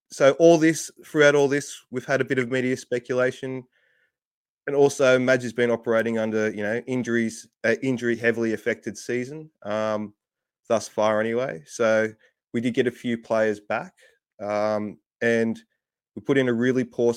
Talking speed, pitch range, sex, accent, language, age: 170 wpm, 105-125 Hz, male, Australian, English, 20-39